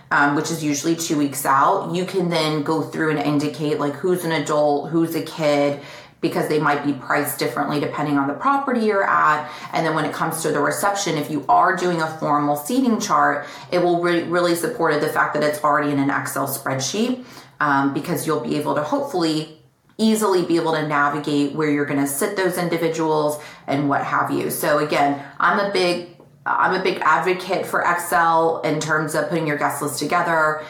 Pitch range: 145-170 Hz